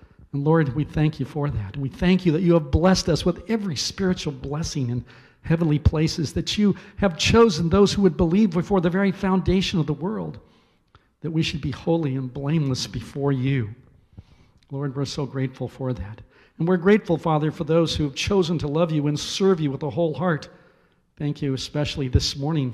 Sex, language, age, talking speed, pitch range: male, English, 50-69, 200 wpm, 125-165 Hz